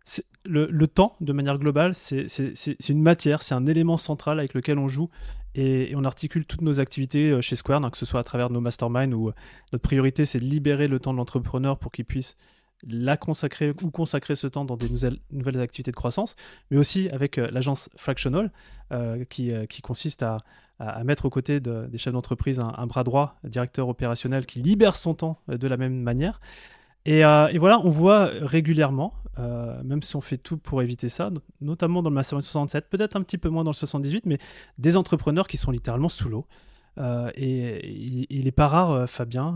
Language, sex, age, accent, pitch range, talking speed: French, male, 20-39, French, 125-160 Hz, 215 wpm